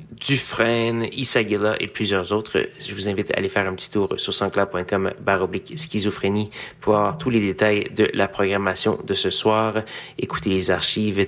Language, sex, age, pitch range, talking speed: French, male, 30-49, 95-110 Hz, 155 wpm